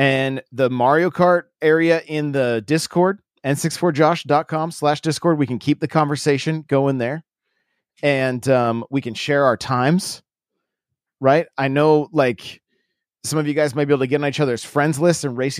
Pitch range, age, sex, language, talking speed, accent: 125-155 Hz, 30-49, male, English, 175 wpm, American